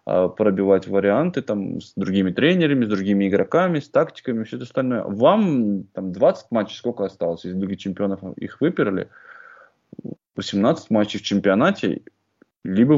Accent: native